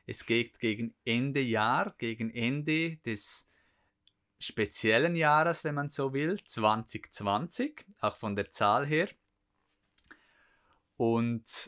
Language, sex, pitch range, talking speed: German, male, 110-135 Hz, 110 wpm